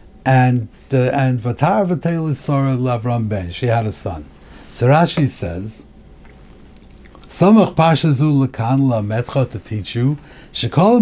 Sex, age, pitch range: male, 60-79, 120-160 Hz